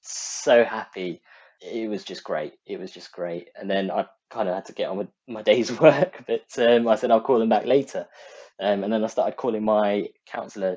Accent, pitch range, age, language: British, 115-175 Hz, 20-39, English